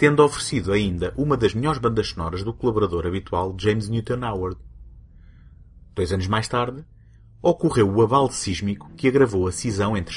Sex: male